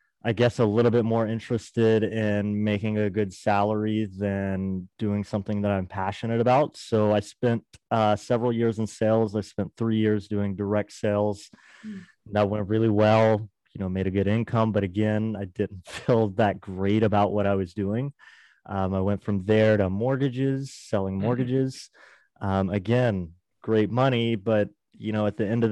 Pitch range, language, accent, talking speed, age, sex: 100-110 Hz, English, American, 175 wpm, 20-39, male